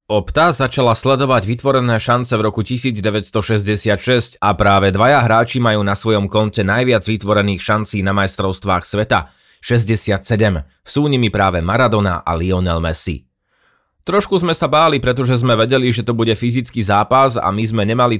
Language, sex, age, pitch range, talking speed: Slovak, male, 20-39, 100-125 Hz, 150 wpm